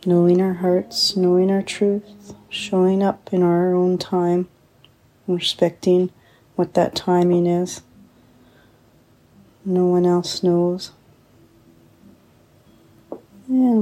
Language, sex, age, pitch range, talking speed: English, female, 30-49, 175-190 Hz, 95 wpm